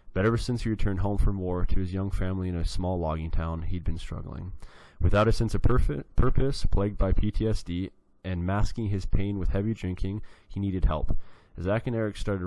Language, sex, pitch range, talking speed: English, male, 85-100 Hz, 200 wpm